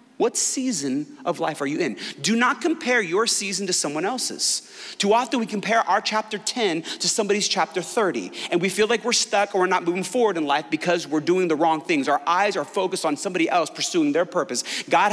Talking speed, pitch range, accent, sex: 220 wpm, 170-235 Hz, American, male